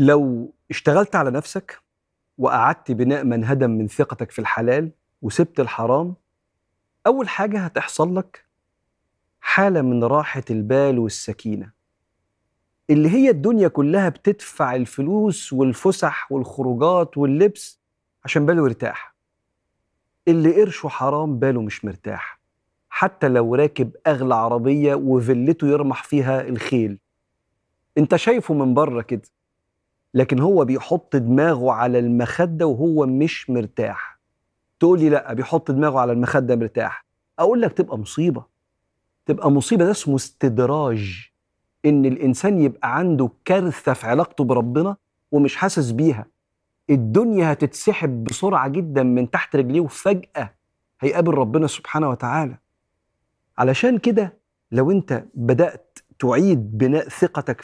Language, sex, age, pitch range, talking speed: Arabic, male, 40-59, 125-170 Hz, 115 wpm